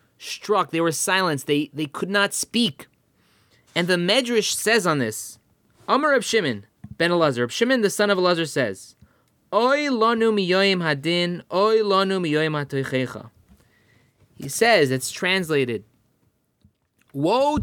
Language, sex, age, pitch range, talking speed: English, male, 20-39, 150-200 Hz, 120 wpm